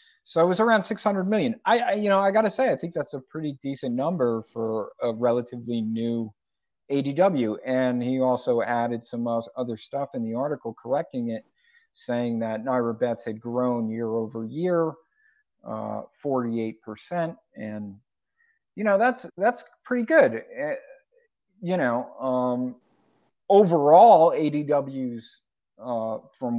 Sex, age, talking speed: male, 50-69, 145 wpm